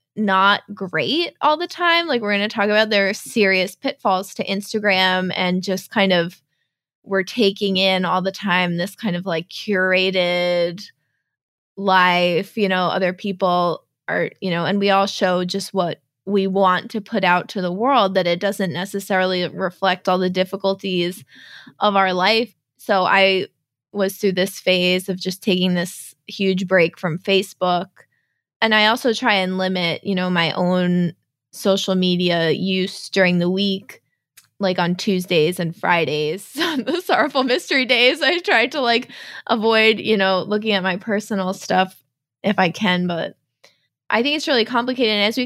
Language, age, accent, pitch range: English, 20-39, American, 180-210 Hz